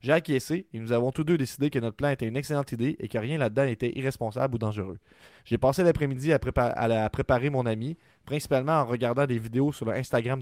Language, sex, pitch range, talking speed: French, male, 120-150 Hz, 225 wpm